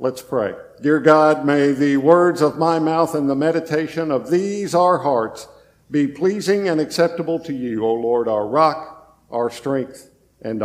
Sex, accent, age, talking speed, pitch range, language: male, American, 50-69, 170 wpm, 145-185 Hz, English